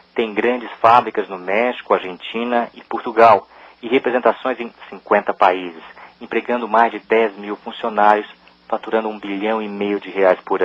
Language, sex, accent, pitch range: Chinese, male, Brazilian, 90-115 Hz